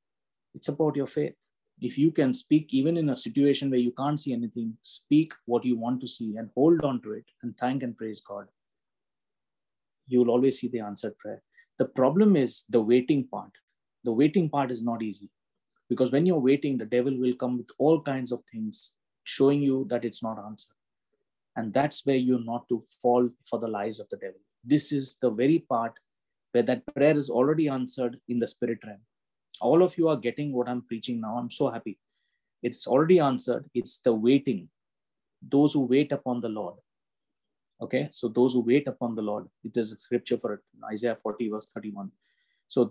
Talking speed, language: 200 wpm, English